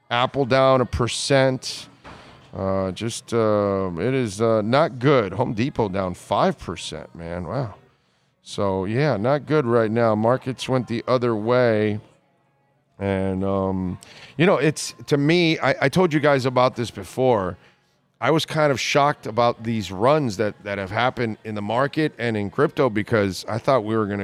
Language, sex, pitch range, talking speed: English, male, 110-145 Hz, 170 wpm